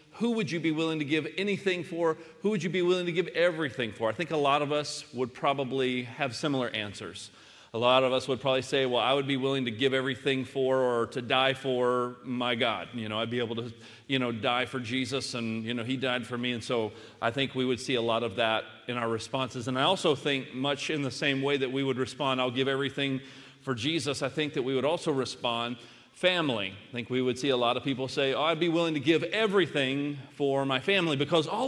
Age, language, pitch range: 40-59, English, 130-175 Hz